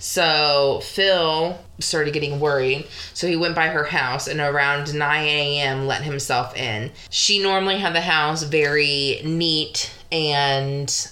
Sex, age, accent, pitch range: female, 20-39, American, 135-160 Hz